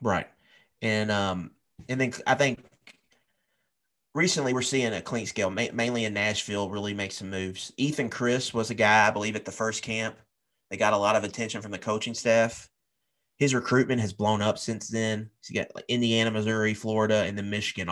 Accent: American